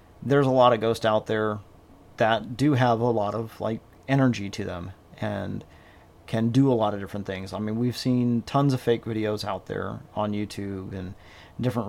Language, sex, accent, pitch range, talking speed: English, male, American, 100-115 Hz, 195 wpm